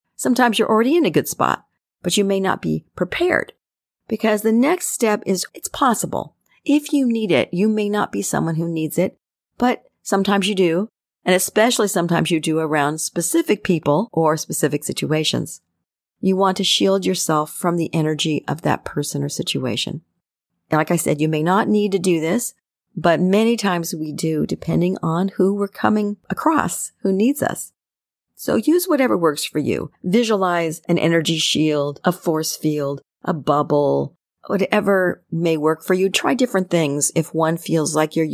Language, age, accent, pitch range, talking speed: English, 40-59, American, 155-200 Hz, 175 wpm